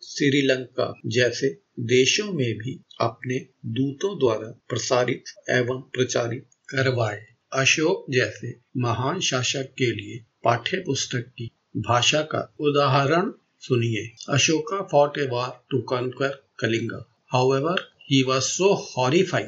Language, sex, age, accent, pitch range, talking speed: Hindi, male, 50-69, native, 120-140 Hz, 100 wpm